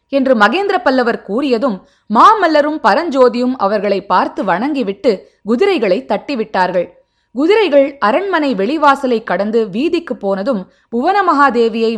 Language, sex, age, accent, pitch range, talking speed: Tamil, female, 20-39, native, 190-275 Hz, 90 wpm